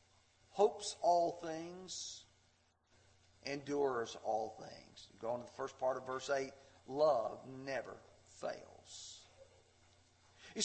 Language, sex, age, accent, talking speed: English, male, 40-59, American, 105 wpm